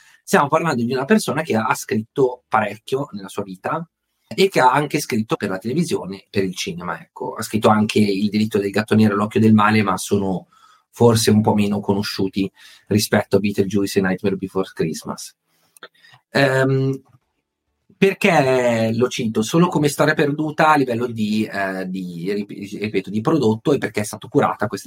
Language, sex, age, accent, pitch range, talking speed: Italian, male, 30-49, native, 100-130 Hz, 175 wpm